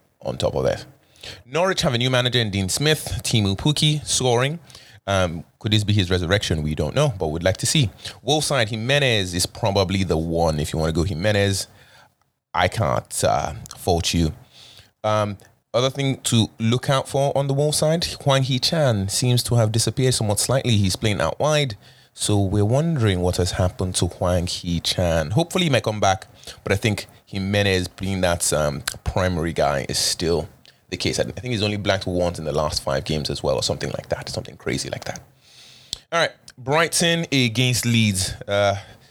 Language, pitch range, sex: English, 90-125 Hz, male